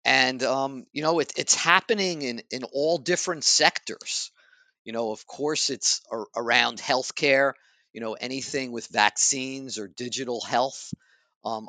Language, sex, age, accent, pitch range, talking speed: English, male, 50-69, American, 120-145 Hz, 140 wpm